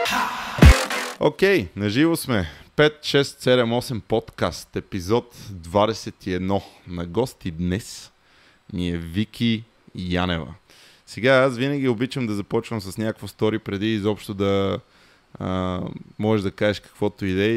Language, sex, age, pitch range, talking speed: Bulgarian, male, 20-39, 100-120 Hz, 120 wpm